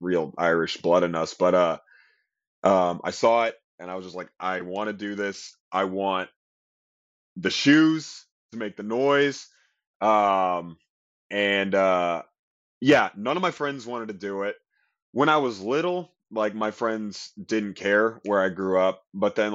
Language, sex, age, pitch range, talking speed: English, male, 20-39, 90-110 Hz, 170 wpm